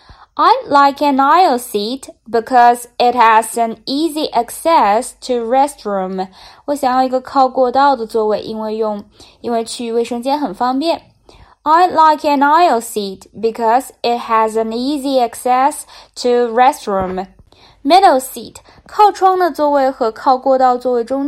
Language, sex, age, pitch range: Chinese, female, 10-29, 220-285 Hz